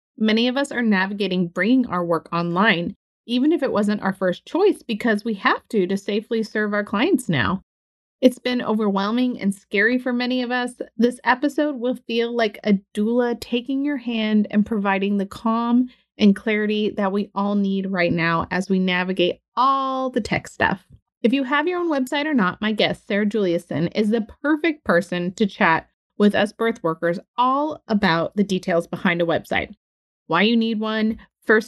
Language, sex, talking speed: English, female, 185 wpm